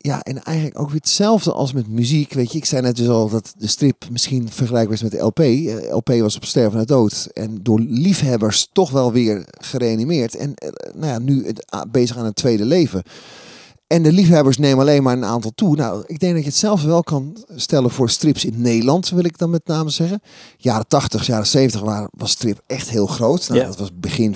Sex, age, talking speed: male, 30-49, 220 wpm